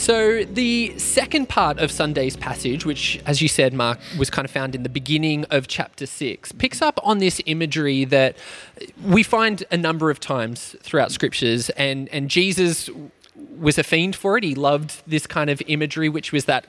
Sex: male